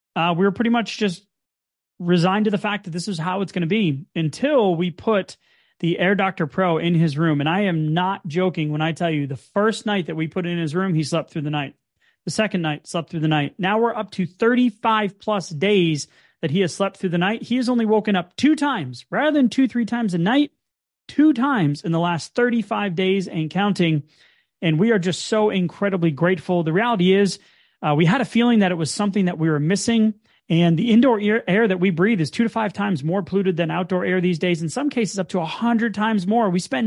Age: 30-49